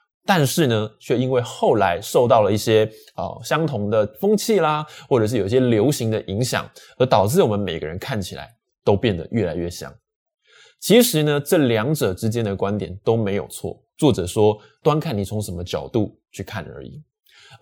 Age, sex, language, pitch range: 20-39, male, Chinese, 105-150 Hz